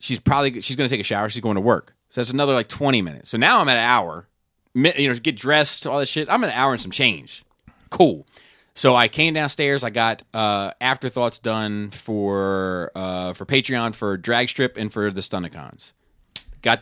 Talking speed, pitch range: 215 wpm, 105-130 Hz